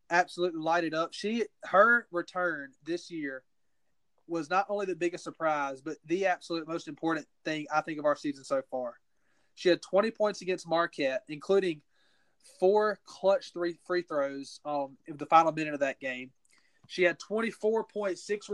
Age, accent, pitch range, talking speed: 30-49, American, 155-185 Hz, 160 wpm